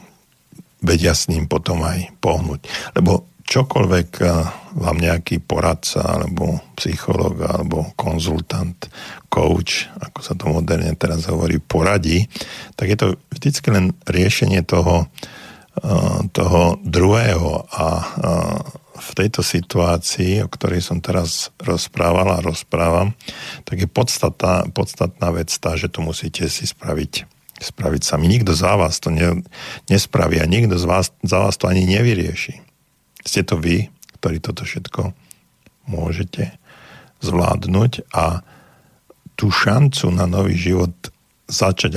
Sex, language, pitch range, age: male, Slovak, 85-100 Hz, 50-69